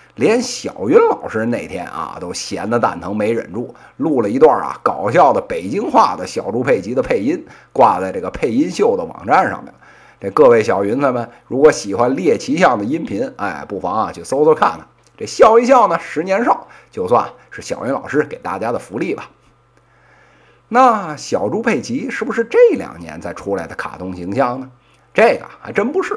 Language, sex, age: Chinese, male, 50-69